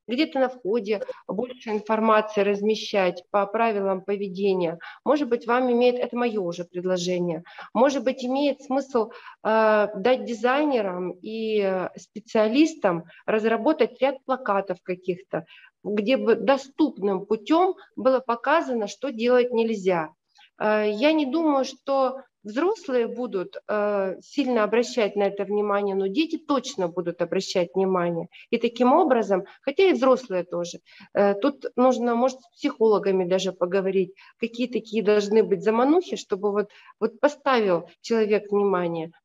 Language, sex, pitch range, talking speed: Russian, female, 200-265 Hz, 130 wpm